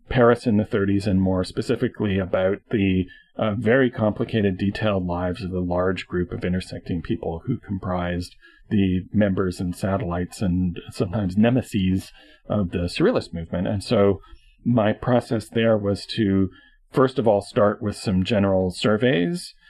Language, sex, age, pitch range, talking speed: English, male, 40-59, 95-110 Hz, 150 wpm